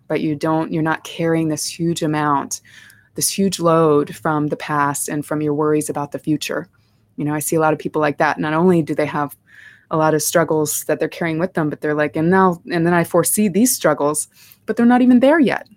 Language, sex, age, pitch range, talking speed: English, female, 20-39, 150-180 Hz, 240 wpm